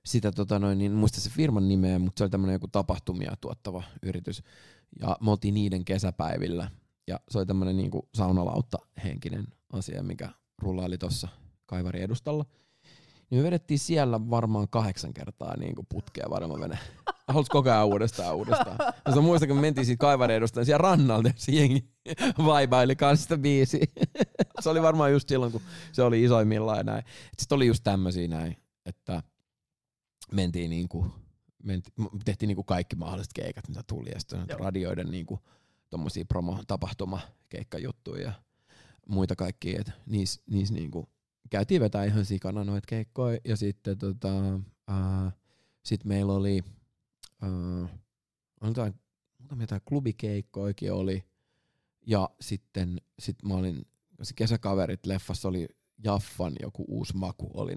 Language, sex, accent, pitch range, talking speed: Finnish, male, native, 95-125 Hz, 130 wpm